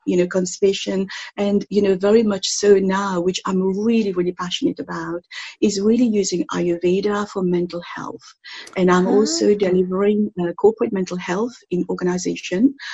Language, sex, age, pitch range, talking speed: English, female, 50-69, 175-200 Hz, 155 wpm